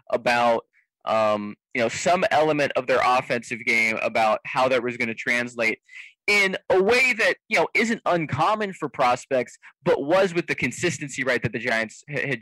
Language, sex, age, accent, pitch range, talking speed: English, male, 20-39, American, 115-145 Hz, 180 wpm